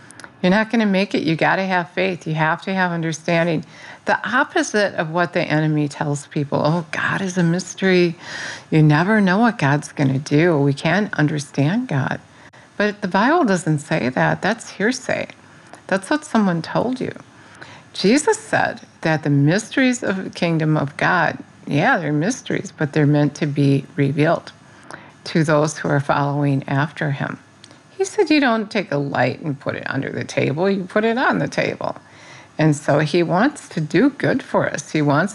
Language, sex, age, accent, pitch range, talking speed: English, female, 50-69, American, 150-195 Hz, 185 wpm